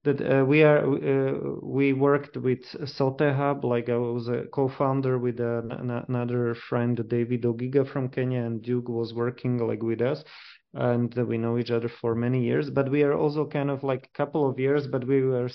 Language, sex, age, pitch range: English, male, 30-49, 125-140 Hz